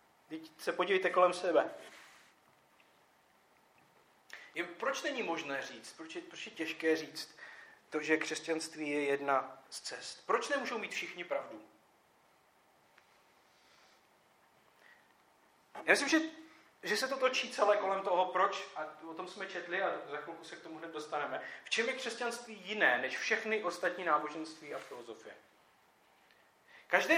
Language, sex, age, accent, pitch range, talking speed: Czech, male, 40-59, native, 160-200 Hz, 135 wpm